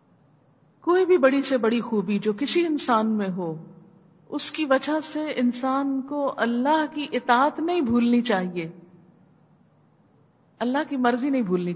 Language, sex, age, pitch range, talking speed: Urdu, female, 50-69, 175-240 Hz, 145 wpm